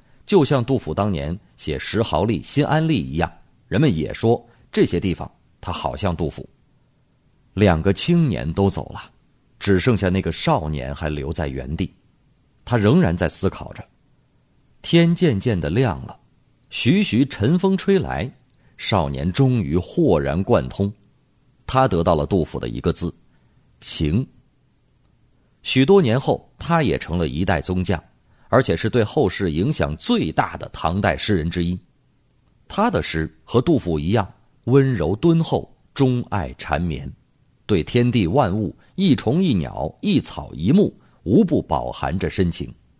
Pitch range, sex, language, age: 85-130 Hz, male, Chinese, 30-49